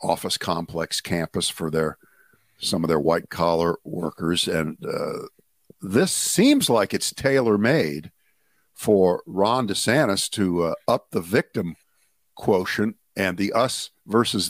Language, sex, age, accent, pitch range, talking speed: English, male, 50-69, American, 90-115 Hz, 125 wpm